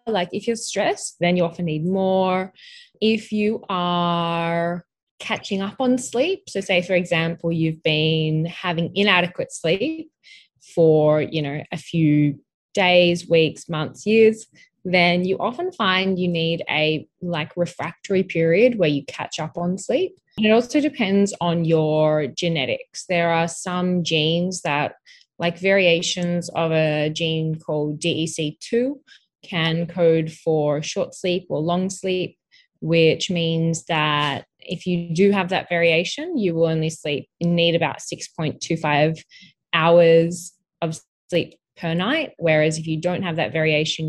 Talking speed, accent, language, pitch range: 145 wpm, Australian, English, 160-190 Hz